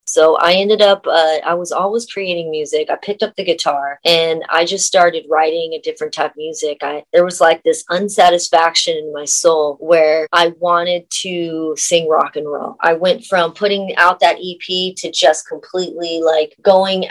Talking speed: 190 wpm